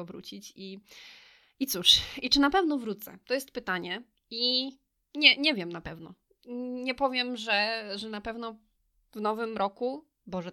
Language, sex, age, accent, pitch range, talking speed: Polish, female, 20-39, native, 200-250 Hz, 160 wpm